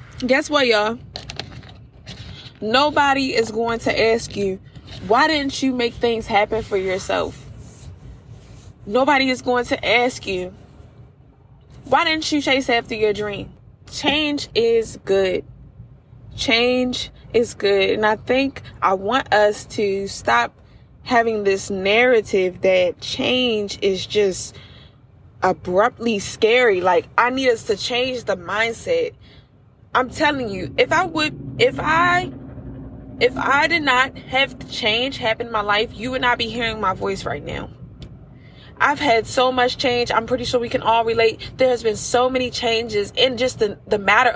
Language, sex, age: English, female, 20-39